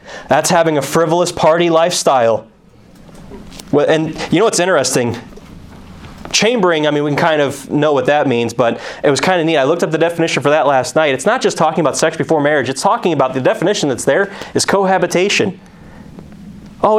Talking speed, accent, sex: 195 wpm, American, male